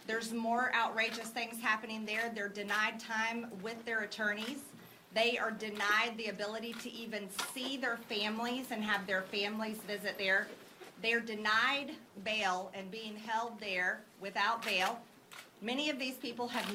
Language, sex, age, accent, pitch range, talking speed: English, female, 40-59, American, 200-235 Hz, 150 wpm